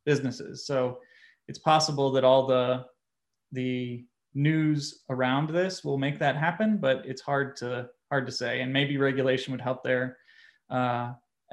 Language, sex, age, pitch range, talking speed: English, male, 30-49, 135-160 Hz, 145 wpm